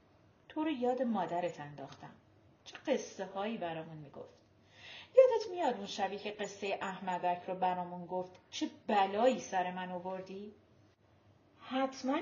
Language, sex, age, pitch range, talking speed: Persian, female, 40-59, 185-275 Hz, 125 wpm